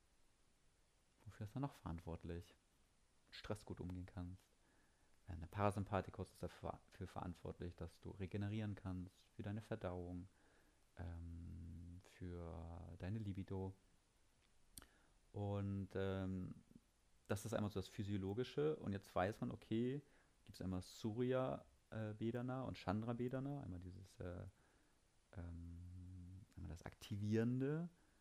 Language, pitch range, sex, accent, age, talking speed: German, 85-110 Hz, male, German, 30-49, 110 wpm